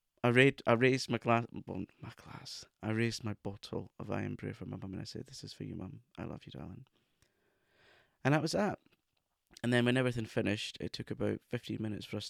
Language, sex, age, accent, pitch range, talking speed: English, male, 20-39, British, 105-130 Hz, 230 wpm